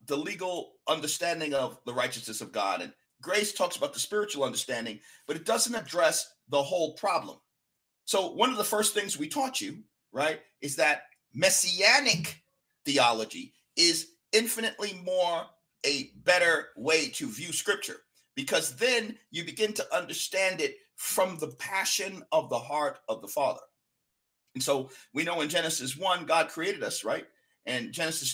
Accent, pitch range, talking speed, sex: American, 135-210 Hz, 155 wpm, male